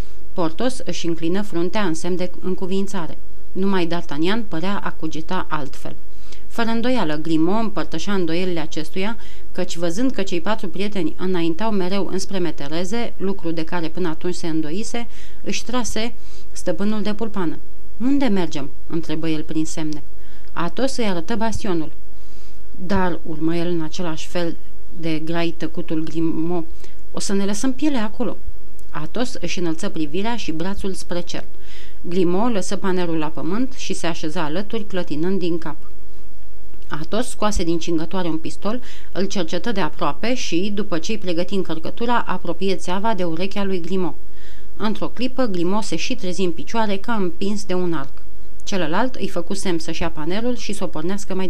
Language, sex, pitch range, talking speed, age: Romanian, female, 165-205 Hz, 155 wpm, 30-49